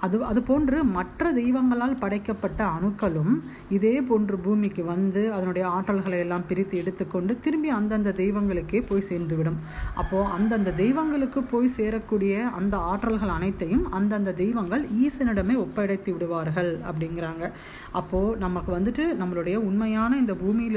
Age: 30-49